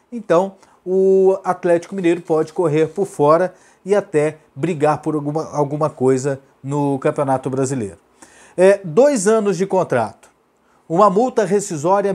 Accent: Brazilian